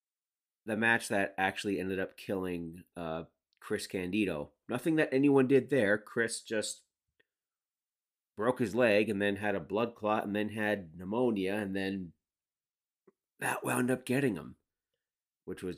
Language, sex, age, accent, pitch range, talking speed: English, male, 30-49, American, 95-125 Hz, 150 wpm